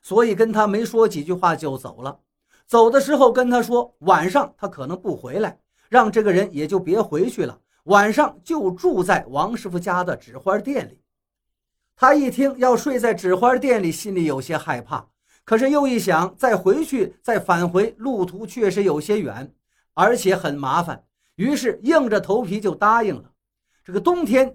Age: 50-69